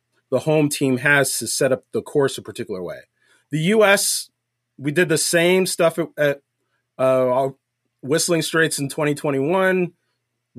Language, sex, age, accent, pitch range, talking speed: English, male, 30-49, American, 130-175 Hz, 145 wpm